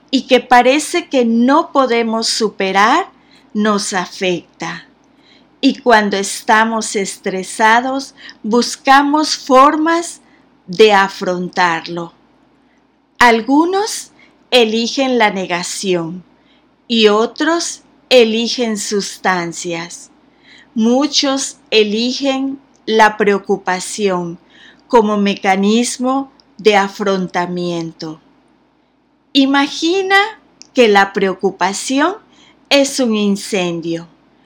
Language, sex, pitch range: Spanish, female, 200-280 Hz